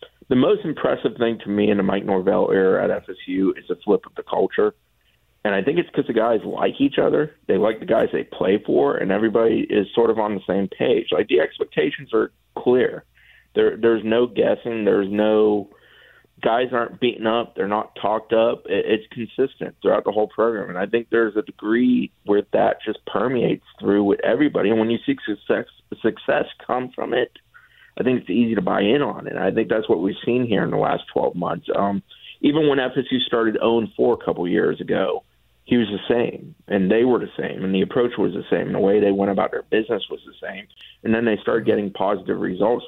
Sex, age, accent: male, 30-49, American